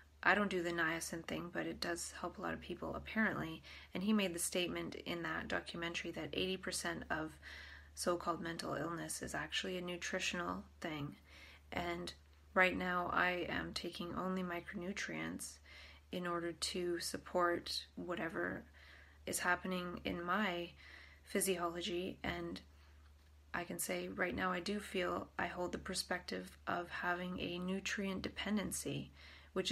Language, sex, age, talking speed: English, female, 20-39, 140 wpm